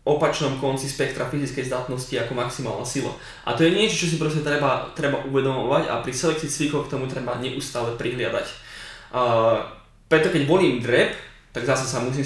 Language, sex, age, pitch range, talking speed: Slovak, male, 20-39, 125-155 Hz, 175 wpm